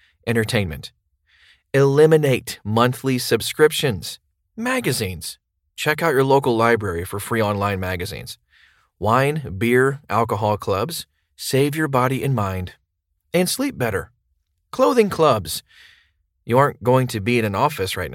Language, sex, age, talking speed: English, male, 30-49, 120 wpm